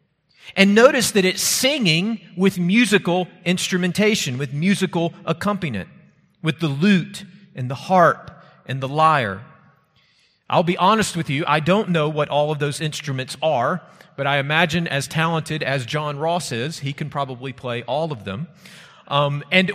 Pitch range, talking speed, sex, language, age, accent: 155-205 Hz, 160 wpm, male, English, 40-59, American